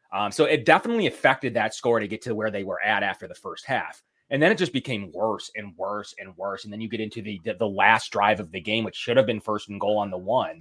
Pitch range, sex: 105-155 Hz, male